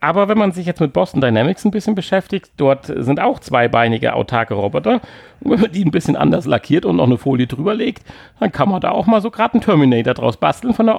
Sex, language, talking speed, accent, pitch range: male, German, 245 wpm, German, 130-200 Hz